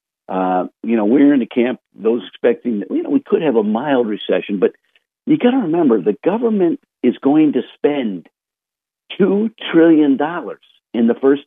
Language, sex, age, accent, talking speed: English, male, 50-69, American, 185 wpm